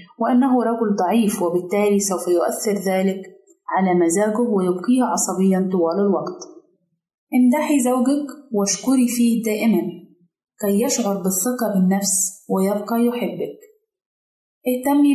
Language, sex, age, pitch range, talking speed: Arabic, female, 30-49, 195-240 Hz, 100 wpm